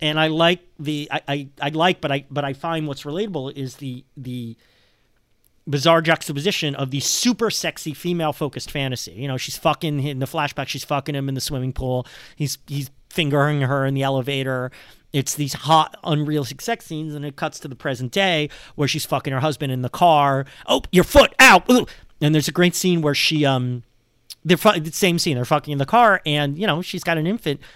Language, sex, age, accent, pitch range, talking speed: English, male, 40-59, American, 130-160 Hz, 210 wpm